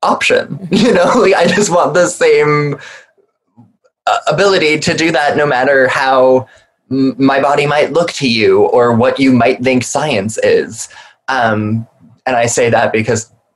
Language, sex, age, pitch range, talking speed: English, male, 20-39, 115-160 Hz, 150 wpm